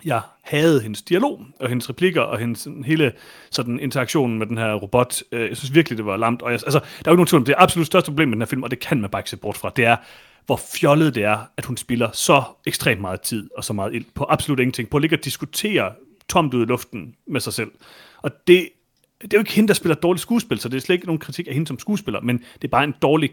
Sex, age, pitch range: male, 30-49, 110-145 Hz